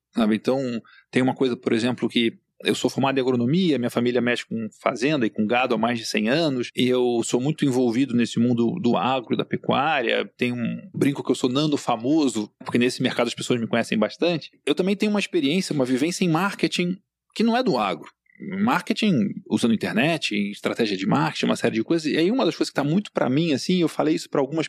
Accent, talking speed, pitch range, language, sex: Brazilian, 225 wpm, 115-155 Hz, Portuguese, male